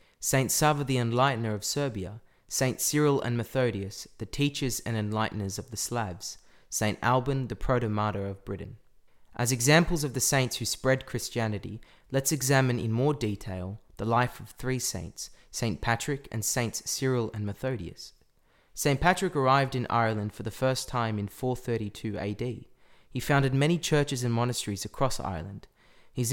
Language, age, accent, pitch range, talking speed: English, 20-39, Australian, 105-130 Hz, 160 wpm